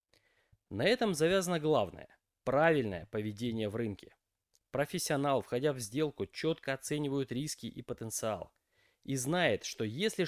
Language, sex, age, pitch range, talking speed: Russian, male, 20-39, 115-160 Hz, 125 wpm